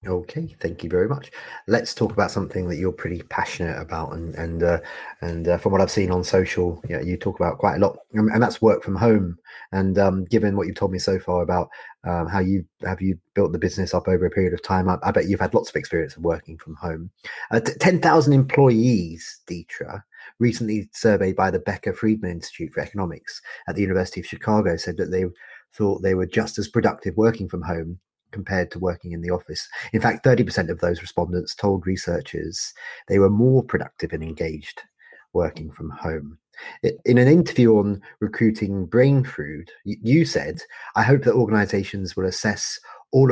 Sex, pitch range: male, 90-110 Hz